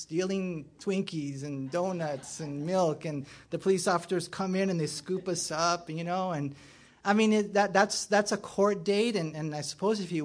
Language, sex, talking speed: English, male, 195 wpm